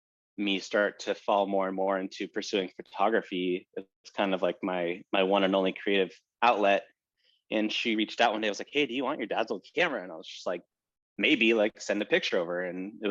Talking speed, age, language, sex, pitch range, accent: 235 wpm, 20-39, English, male, 95-110 Hz, American